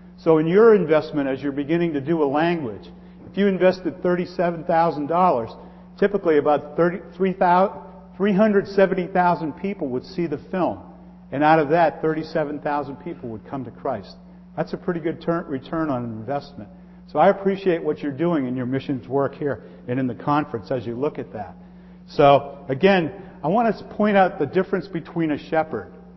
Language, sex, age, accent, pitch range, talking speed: English, male, 50-69, American, 145-185 Hz, 165 wpm